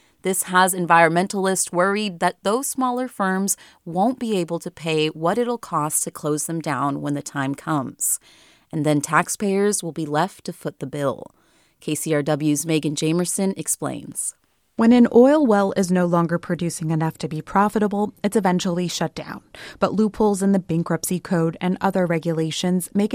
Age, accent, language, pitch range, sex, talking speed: 30-49, American, English, 165-220 Hz, female, 165 wpm